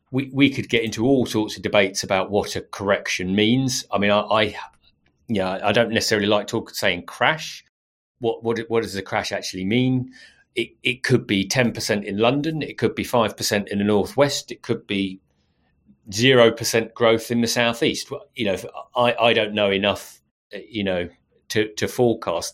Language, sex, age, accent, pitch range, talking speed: English, male, 40-59, British, 95-115 Hz, 190 wpm